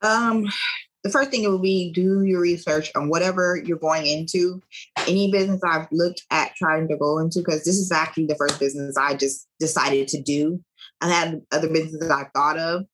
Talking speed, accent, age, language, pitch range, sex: 200 wpm, American, 20-39, English, 155-180 Hz, female